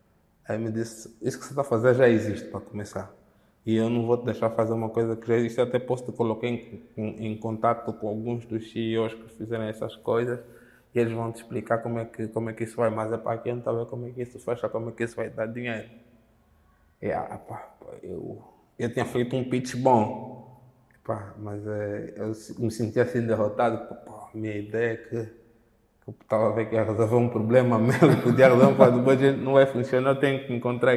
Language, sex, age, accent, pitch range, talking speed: Portuguese, male, 20-39, Brazilian, 115-135 Hz, 230 wpm